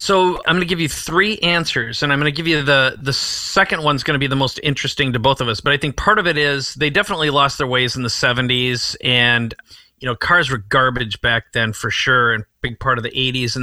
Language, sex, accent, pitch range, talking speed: English, male, American, 125-155 Hz, 265 wpm